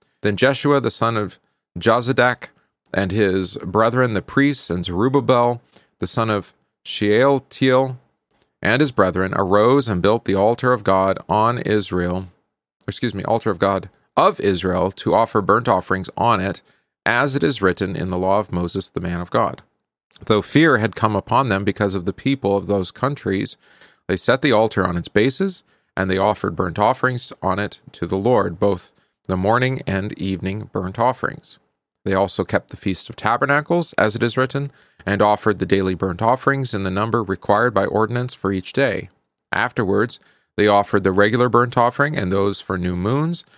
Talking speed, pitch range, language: 180 wpm, 95-125 Hz, English